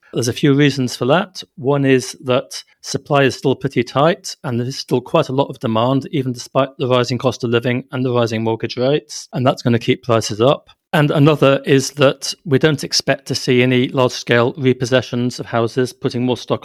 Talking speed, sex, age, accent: 210 wpm, male, 30-49, British